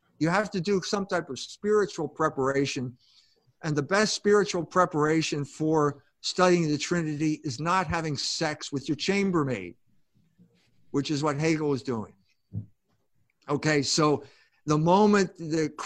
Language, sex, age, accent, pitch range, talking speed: English, male, 50-69, American, 140-195 Hz, 135 wpm